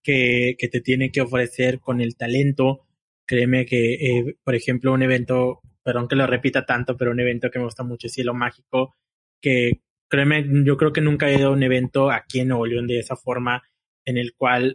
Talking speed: 210 wpm